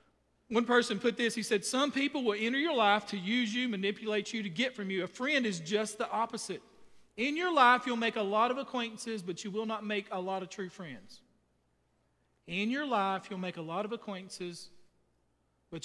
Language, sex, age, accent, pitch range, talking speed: English, male, 40-59, American, 185-245 Hz, 210 wpm